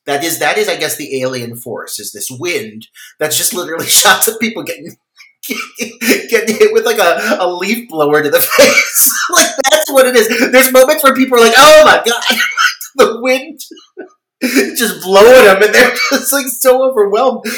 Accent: American